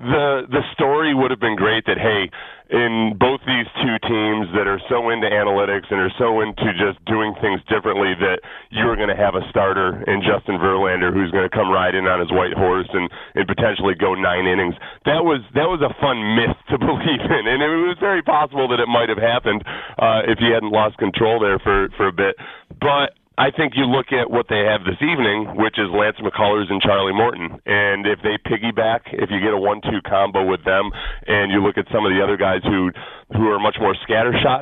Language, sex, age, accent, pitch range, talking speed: English, male, 40-59, American, 105-130 Hz, 220 wpm